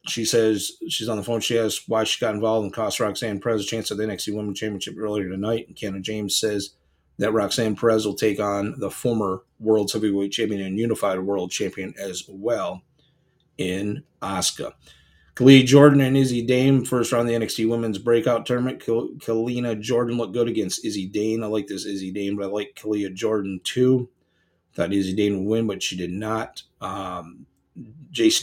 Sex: male